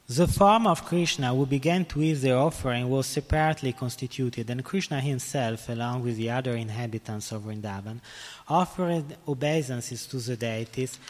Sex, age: male, 20-39